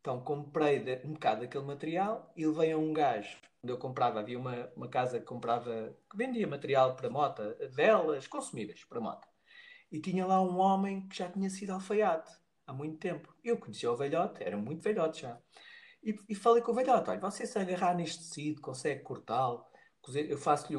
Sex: male